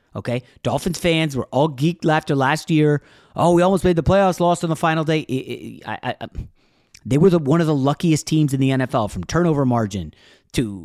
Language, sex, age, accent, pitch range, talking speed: English, male, 30-49, American, 105-160 Hz, 190 wpm